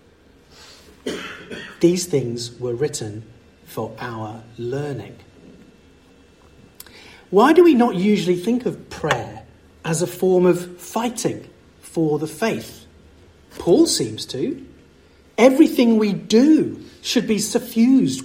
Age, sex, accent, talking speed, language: 40-59, male, British, 105 wpm, English